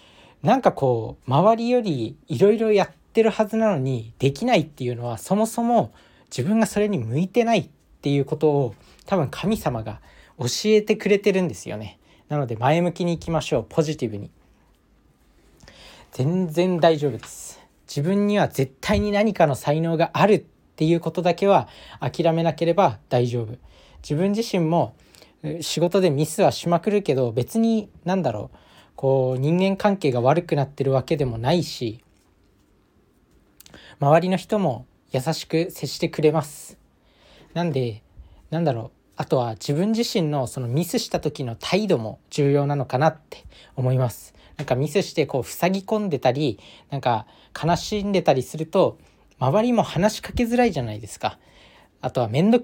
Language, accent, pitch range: Japanese, native, 125-185 Hz